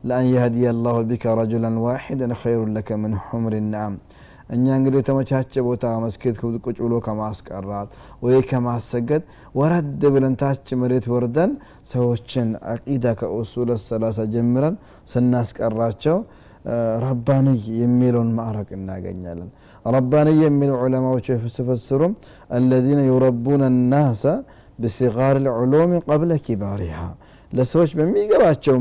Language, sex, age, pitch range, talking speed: Amharic, male, 20-39, 115-140 Hz, 105 wpm